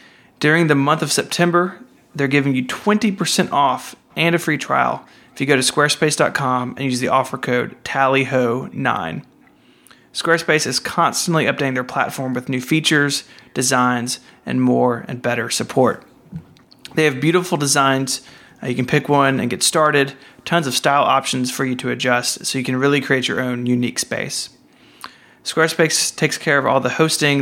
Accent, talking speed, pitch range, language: American, 165 wpm, 130-150 Hz, English